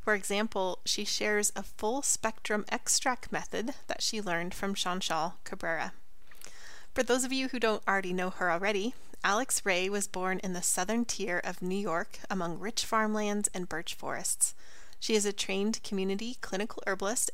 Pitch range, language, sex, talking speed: 185-225 Hz, English, female, 165 wpm